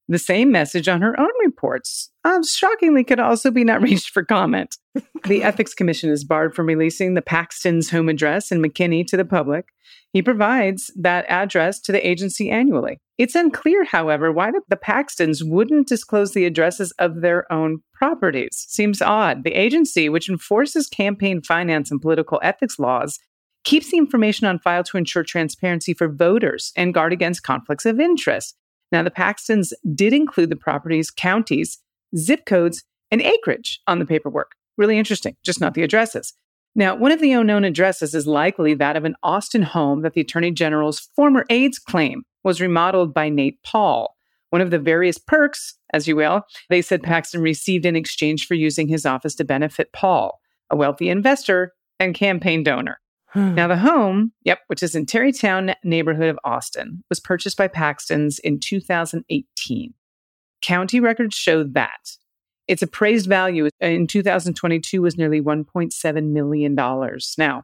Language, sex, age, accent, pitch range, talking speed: English, female, 40-59, American, 160-215 Hz, 165 wpm